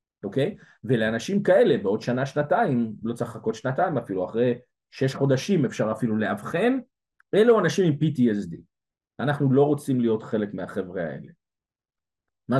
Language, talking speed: English, 135 wpm